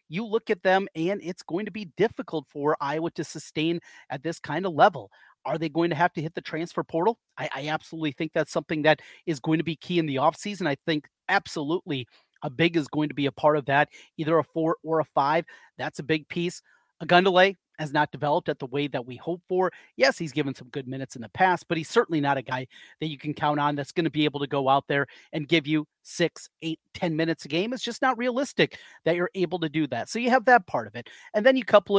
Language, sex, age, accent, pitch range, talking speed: English, male, 30-49, American, 145-190 Hz, 265 wpm